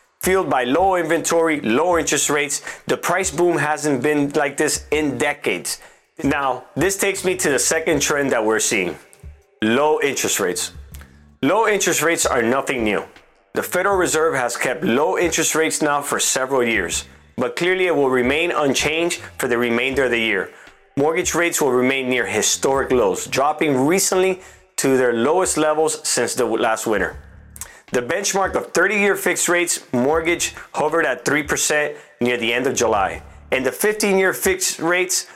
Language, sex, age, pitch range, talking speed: English, male, 30-49, 130-175 Hz, 165 wpm